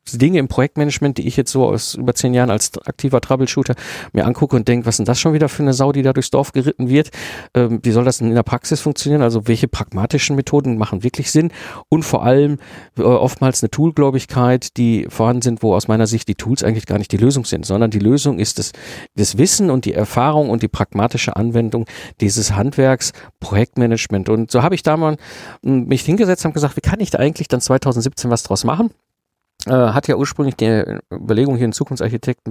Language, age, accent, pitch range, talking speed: German, 50-69, German, 115-145 Hz, 210 wpm